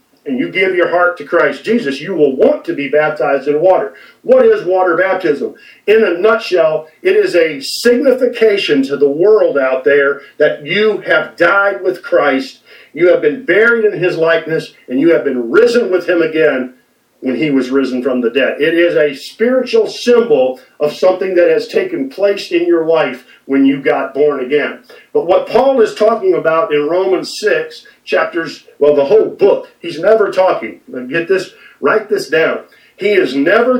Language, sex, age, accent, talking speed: English, male, 50-69, American, 185 wpm